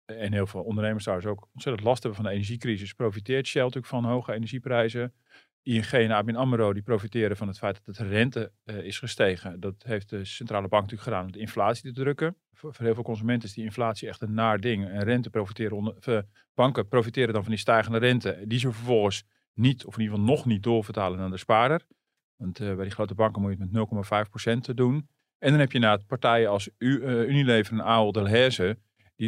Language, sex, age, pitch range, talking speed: Dutch, male, 40-59, 105-120 Hz, 225 wpm